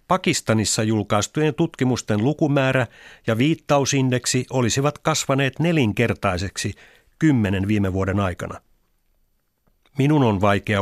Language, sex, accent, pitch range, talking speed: Finnish, male, native, 105-140 Hz, 90 wpm